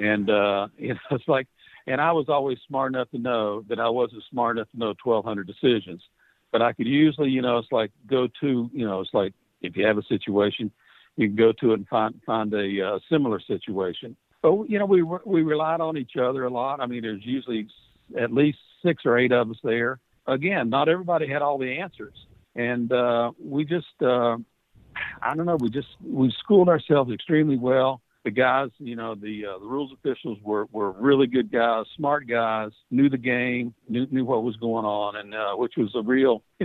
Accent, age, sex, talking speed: American, 60-79, male, 215 wpm